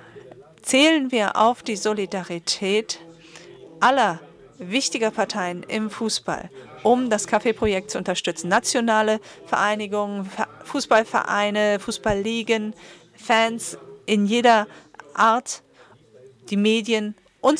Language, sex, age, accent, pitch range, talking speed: English, female, 40-59, German, 190-230 Hz, 90 wpm